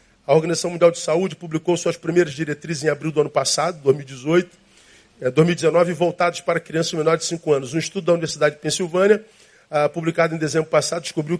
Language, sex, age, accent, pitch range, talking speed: Portuguese, male, 40-59, Brazilian, 150-200 Hz, 180 wpm